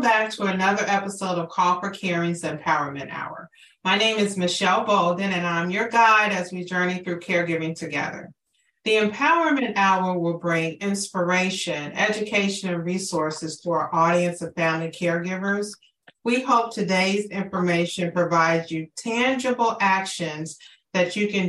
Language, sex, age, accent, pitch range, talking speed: English, female, 40-59, American, 165-200 Hz, 140 wpm